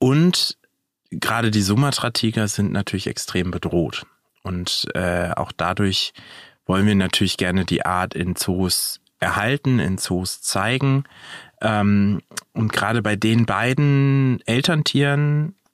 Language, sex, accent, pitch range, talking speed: German, male, German, 95-115 Hz, 120 wpm